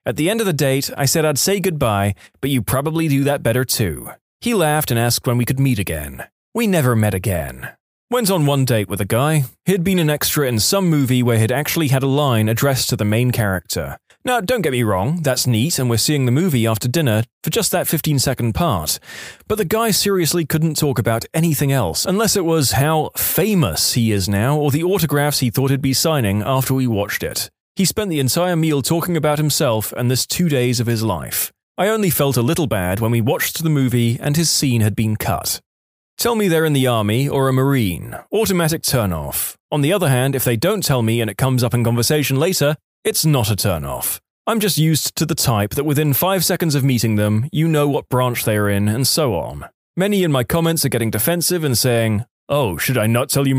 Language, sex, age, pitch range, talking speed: English, male, 20-39, 115-160 Hz, 230 wpm